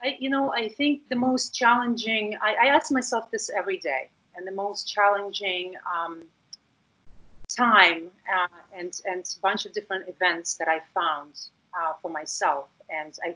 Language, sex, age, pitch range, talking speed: English, female, 40-59, 170-215 Hz, 155 wpm